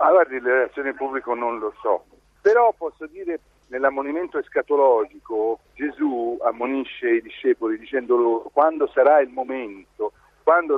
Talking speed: 120 wpm